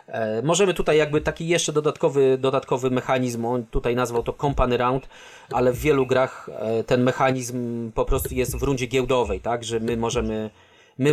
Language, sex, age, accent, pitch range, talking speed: Polish, male, 30-49, native, 115-145 Hz, 165 wpm